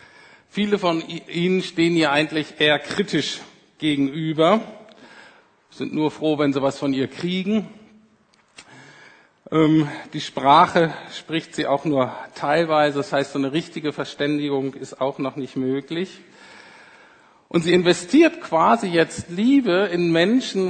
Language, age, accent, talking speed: German, 50-69, German, 130 wpm